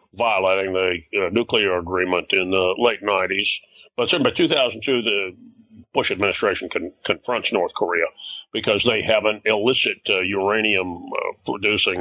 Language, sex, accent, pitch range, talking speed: English, male, American, 100-125 Hz, 130 wpm